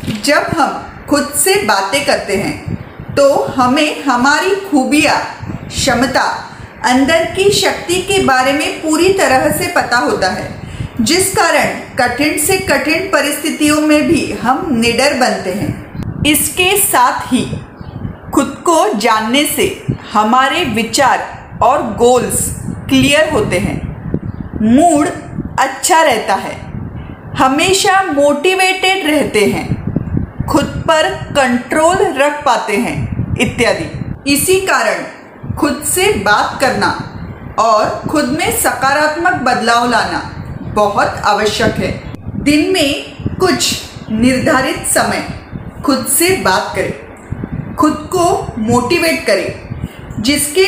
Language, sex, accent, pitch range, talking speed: Marathi, female, native, 260-345 Hz, 110 wpm